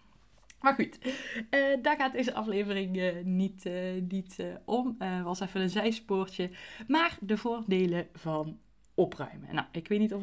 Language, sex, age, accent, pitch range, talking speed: Dutch, female, 20-39, Dutch, 175-210 Hz, 170 wpm